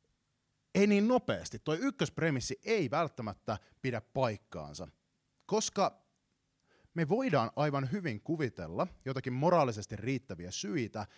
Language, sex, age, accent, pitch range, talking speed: Finnish, male, 30-49, native, 110-165 Hz, 100 wpm